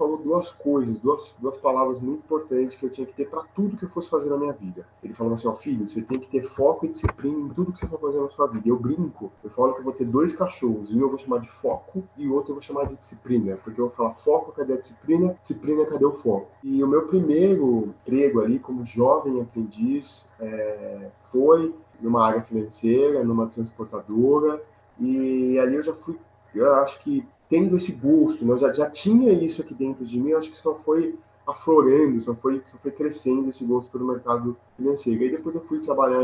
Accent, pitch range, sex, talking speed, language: Brazilian, 115-150 Hz, male, 225 wpm, Portuguese